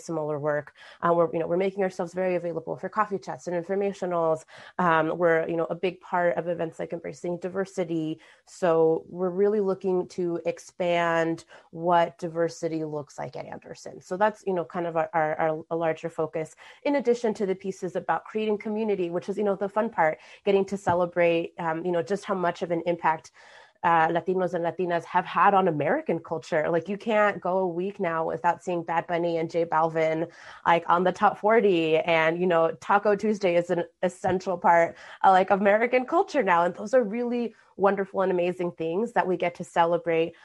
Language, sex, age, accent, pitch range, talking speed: English, female, 30-49, American, 165-190 Hz, 200 wpm